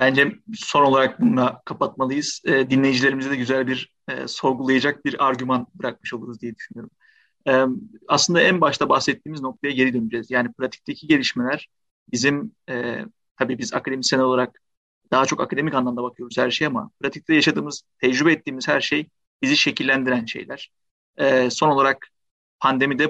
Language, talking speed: Turkish, 145 wpm